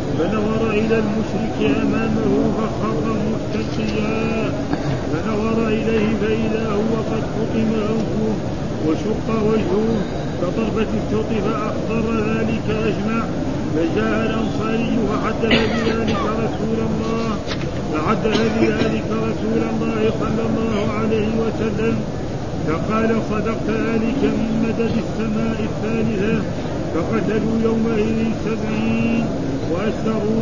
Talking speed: 85 wpm